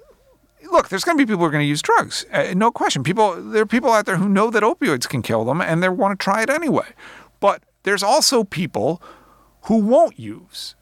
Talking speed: 225 wpm